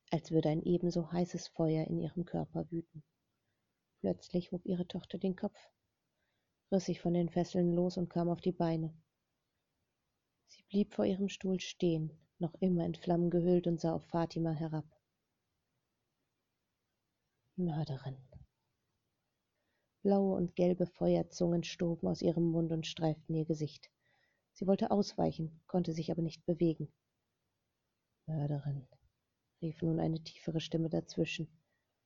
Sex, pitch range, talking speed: female, 160-180 Hz, 135 wpm